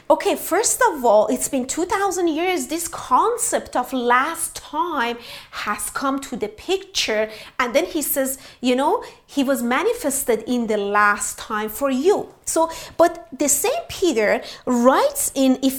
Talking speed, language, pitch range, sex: 155 wpm, English, 245-355 Hz, female